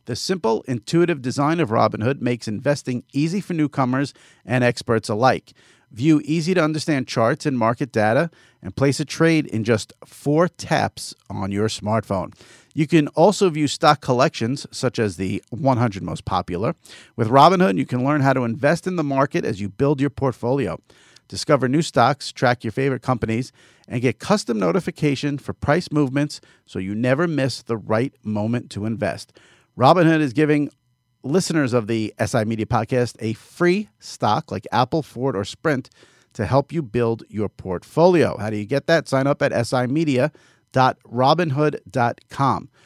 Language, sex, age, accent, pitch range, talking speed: English, male, 50-69, American, 115-150 Hz, 160 wpm